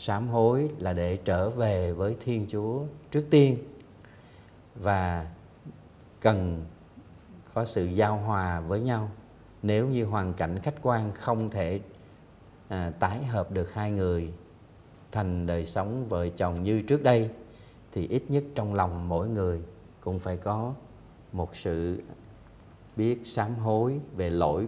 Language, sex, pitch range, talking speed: Vietnamese, male, 90-115 Hz, 140 wpm